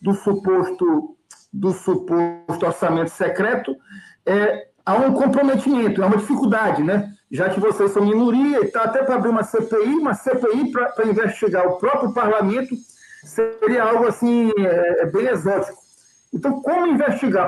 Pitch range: 200-245 Hz